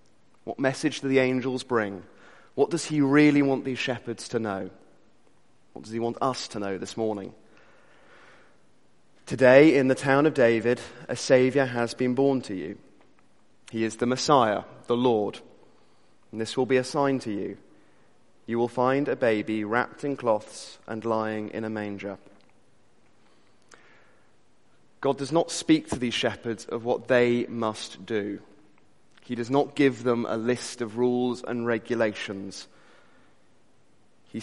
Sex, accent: male, British